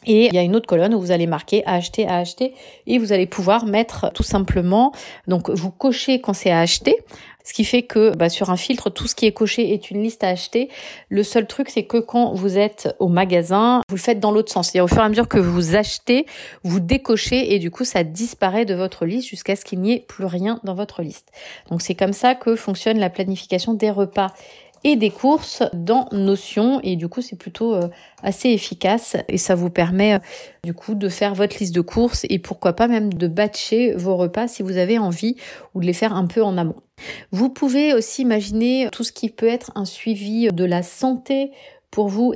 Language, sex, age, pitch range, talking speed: French, female, 30-49, 190-230 Hz, 230 wpm